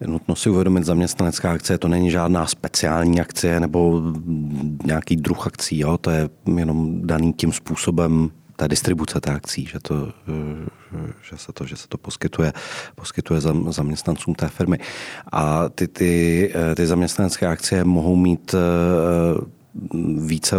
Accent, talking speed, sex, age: native, 125 wpm, male, 40-59